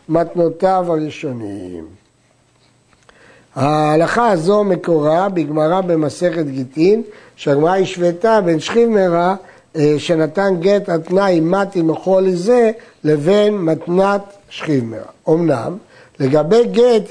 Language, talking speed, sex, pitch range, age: Hebrew, 85 wpm, male, 165-225 Hz, 60-79